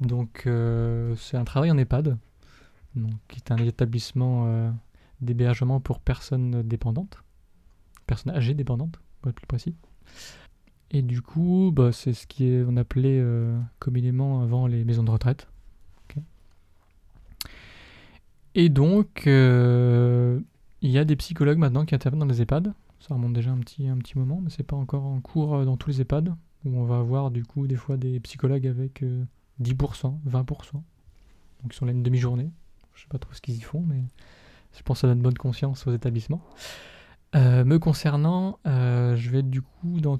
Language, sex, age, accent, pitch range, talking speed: French, male, 20-39, French, 120-140 Hz, 180 wpm